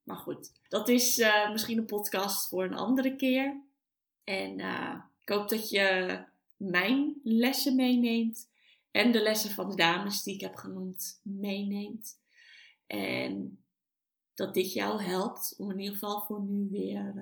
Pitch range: 185-250 Hz